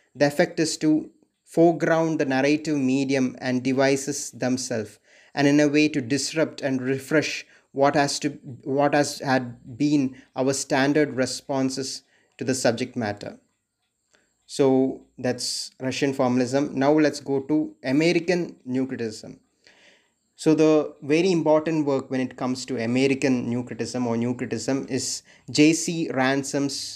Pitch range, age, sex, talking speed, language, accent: 125-145 Hz, 20-39, male, 135 wpm, Malayalam, native